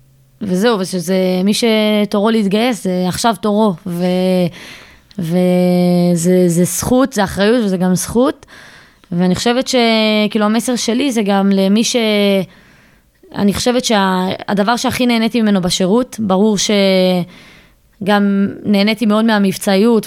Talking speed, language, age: 115 wpm, Hebrew, 20-39